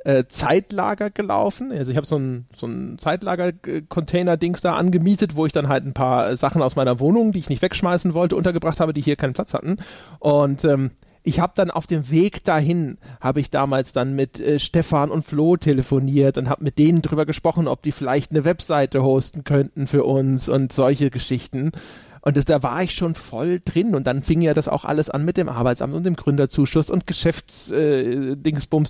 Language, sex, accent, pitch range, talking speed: German, male, German, 135-170 Hz, 195 wpm